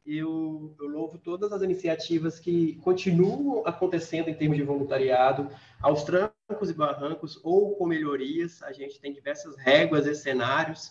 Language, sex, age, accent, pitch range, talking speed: Portuguese, male, 20-39, Brazilian, 145-180 Hz, 150 wpm